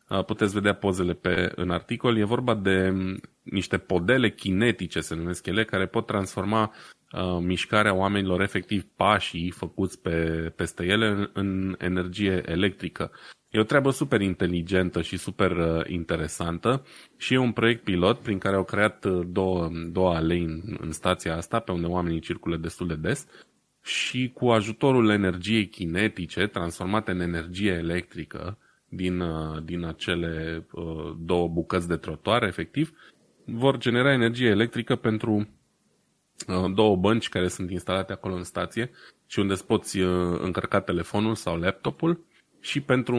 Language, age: Romanian, 20-39